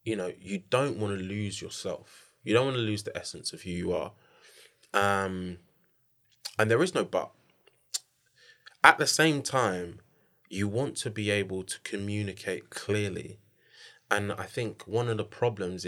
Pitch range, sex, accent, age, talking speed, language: 90-110 Hz, male, British, 20-39, 165 wpm, English